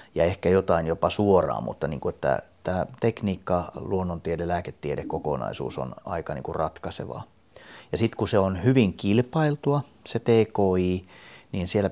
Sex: male